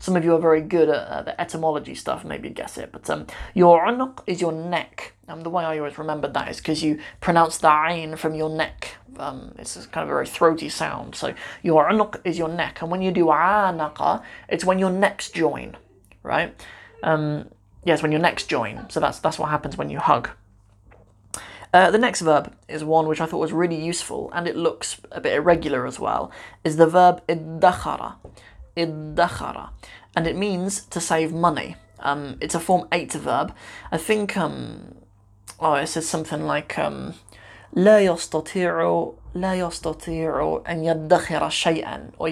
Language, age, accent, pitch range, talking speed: English, 20-39, British, 150-175 Hz, 185 wpm